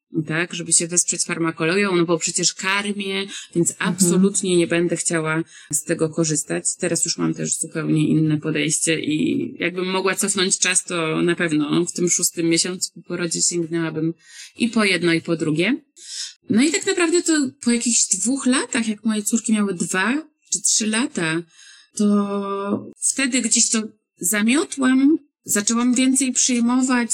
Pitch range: 170-230 Hz